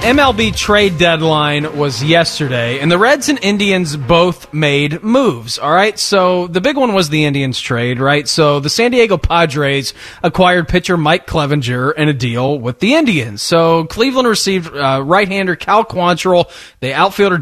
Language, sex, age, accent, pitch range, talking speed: English, male, 30-49, American, 155-215 Hz, 165 wpm